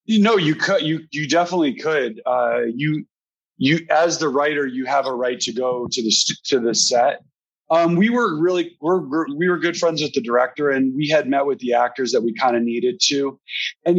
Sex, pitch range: male, 120-165 Hz